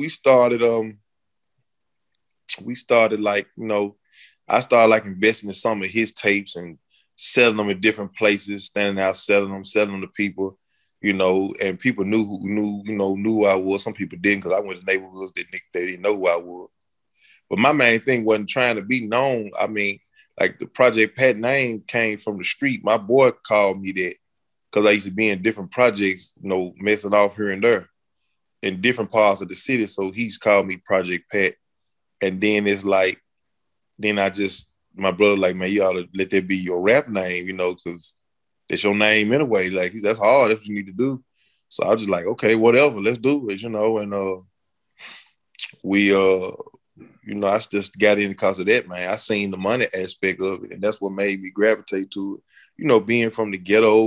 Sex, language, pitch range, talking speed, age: male, English, 95-110 Hz, 215 wpm, 20-39